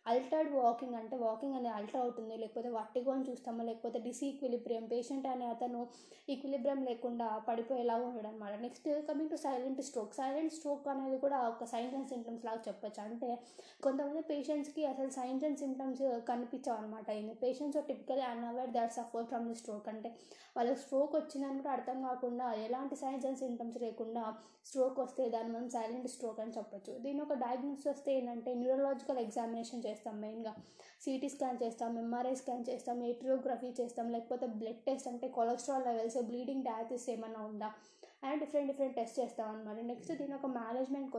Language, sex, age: Telugu, female, 20-39